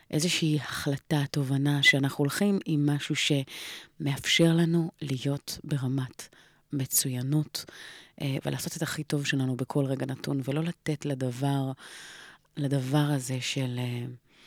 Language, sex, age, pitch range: Hebrew, female, 30-49, 135-150 Hz